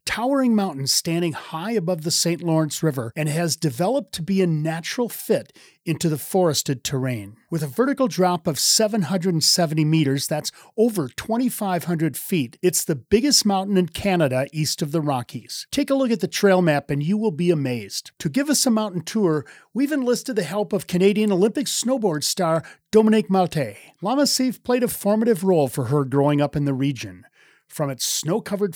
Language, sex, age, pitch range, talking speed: English, male, 40-59, 150-210 Hz, 180 wpm